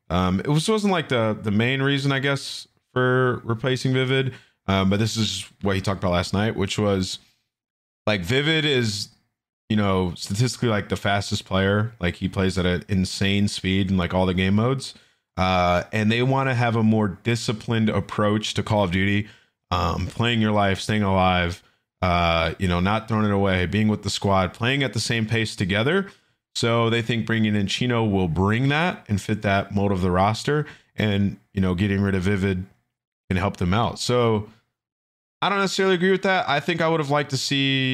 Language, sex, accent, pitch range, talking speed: English, male, American, 95-125 Hz, 200 wpm